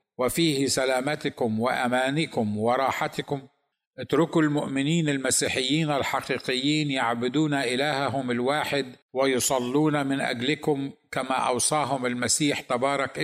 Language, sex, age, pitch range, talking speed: Arabic, male, 50-69, 130-150 Hz, 80 wpm